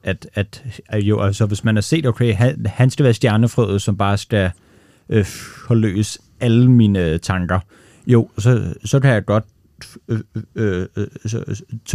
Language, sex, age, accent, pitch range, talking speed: Danish, male, 30-49, native, 100-125 Hz, 160 wpm